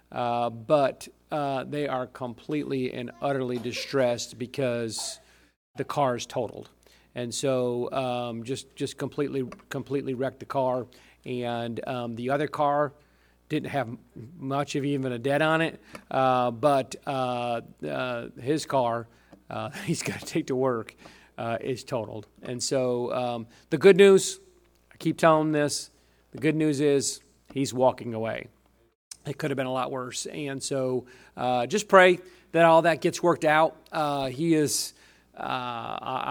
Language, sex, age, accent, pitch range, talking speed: English, male, 40-59, American, 120-145 Hz, 155 wpm